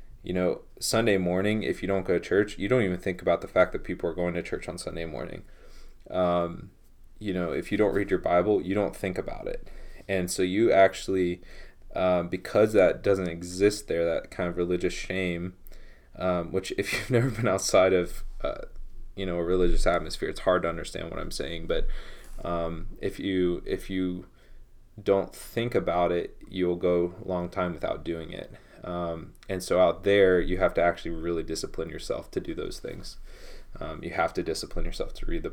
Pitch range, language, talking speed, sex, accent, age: 85-95 Hz, English, 200 wpm, male, American, 20-39